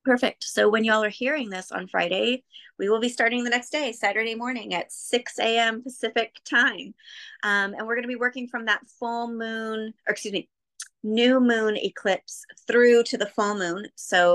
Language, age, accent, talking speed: English, 30-49, American, 190 wpm